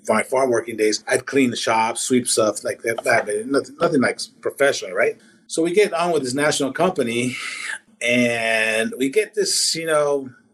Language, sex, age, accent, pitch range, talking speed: English, male, 30-49, American, 120-165 Hz, 190 wpm